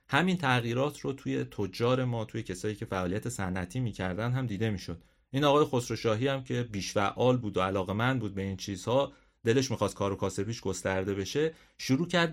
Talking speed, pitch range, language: 180 wpm, 100-135 Hz, Persian